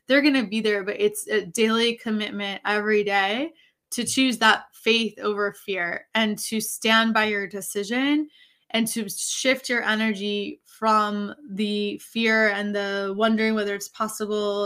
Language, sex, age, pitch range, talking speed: English, female, 20-39, 200-230 Hz, 155 wpm